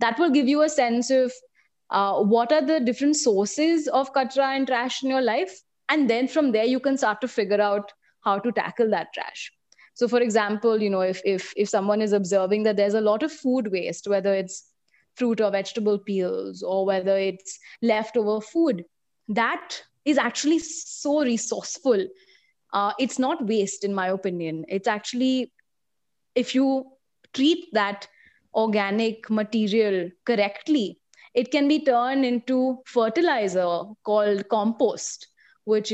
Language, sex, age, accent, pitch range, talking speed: English, female, 20-39, Indian, 200-255 Hz, 155 wpm